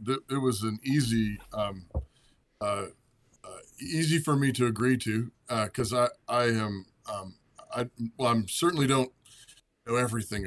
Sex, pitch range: male, 110-130 Hz